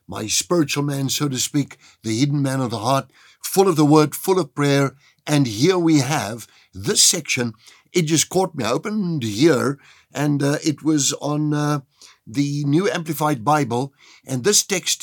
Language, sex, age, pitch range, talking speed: English, male, 60-79, 125-185 Hz, 180 wpm